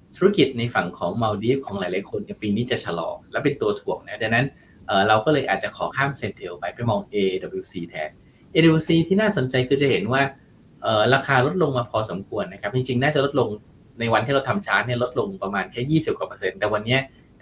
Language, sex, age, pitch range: Thai, male, 20-39, 105-145 Hz